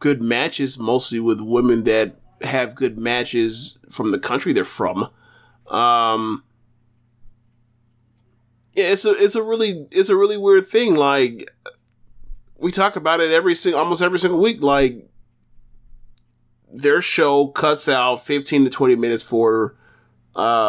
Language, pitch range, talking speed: English, 120-150 Hz, 135 wpm